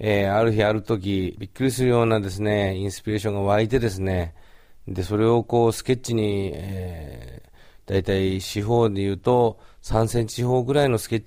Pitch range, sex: 95-115 Hz, male